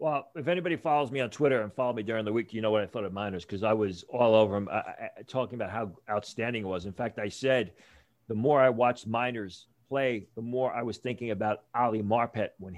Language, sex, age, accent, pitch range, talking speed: English, male, 40-59, American, 105-130 Hz, 245 wpm